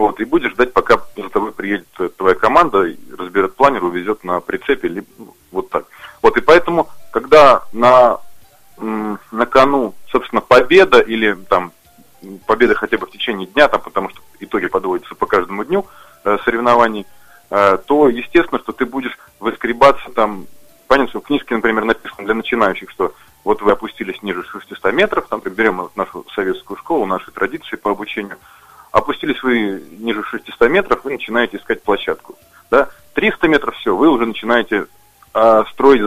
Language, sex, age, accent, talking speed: Russian, male, 30-49, native, 155 wpm